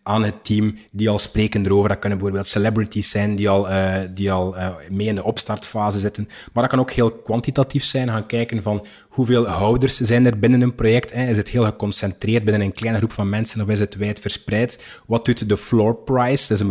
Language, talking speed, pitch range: Dutch, 225 wpm, 105-120 Hz